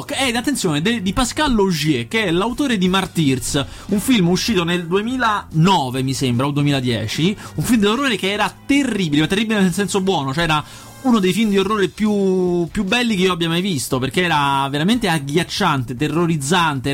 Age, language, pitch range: 30-49, Italian, 135-195 Hz